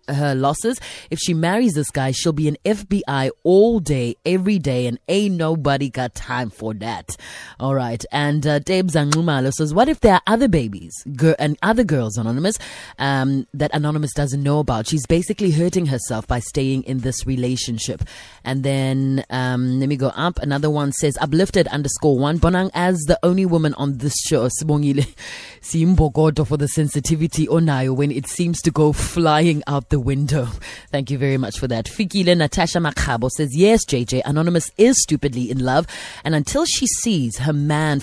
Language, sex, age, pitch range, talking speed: English, female, 20-39, 130-165 Hz, 180 wpm